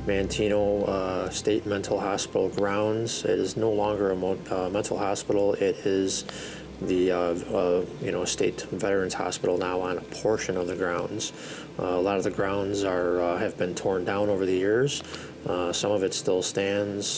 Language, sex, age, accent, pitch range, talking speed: English, male, 20-39, American, 90-100 Hz, 185 wpm